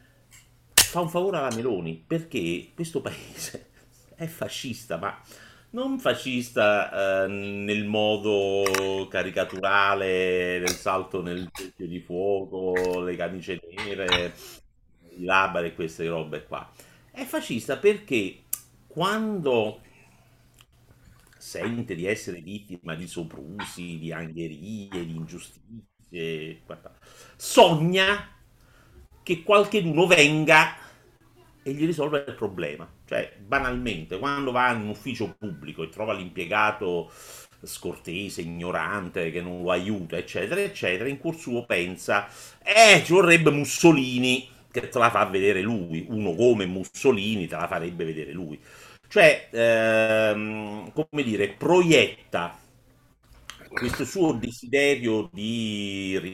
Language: Italian